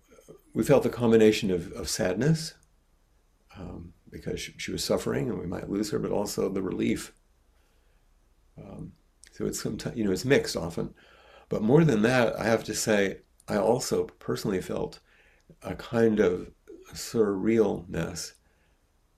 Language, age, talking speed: English, 50-69, 145 wpm